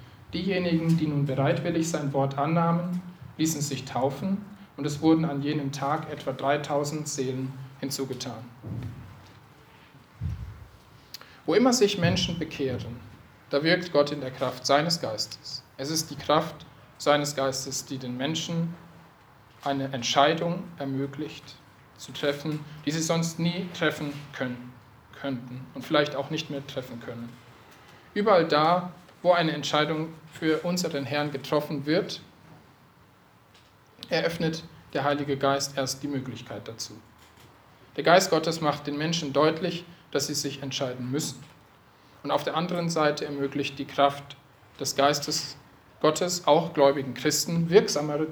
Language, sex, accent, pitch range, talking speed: German, male, German, 135-160 Hz, 130 wpm